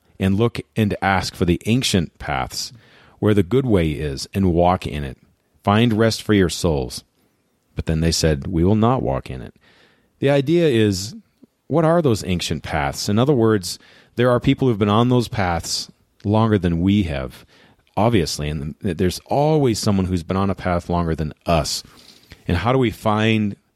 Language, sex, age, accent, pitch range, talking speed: English, male, 40-59, American, 85-115 Hz, 185 wpm